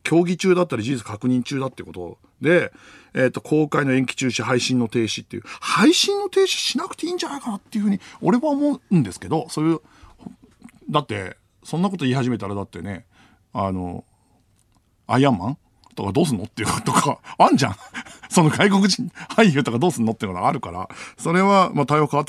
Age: 50-69